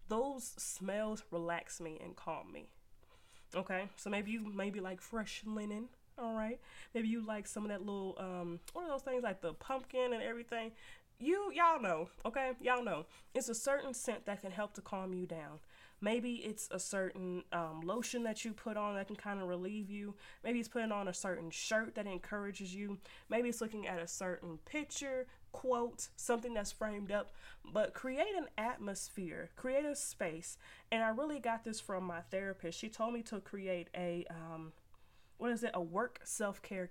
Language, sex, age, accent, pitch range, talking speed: English, female, 20-39, American, 180-230 Hz, 190 wpm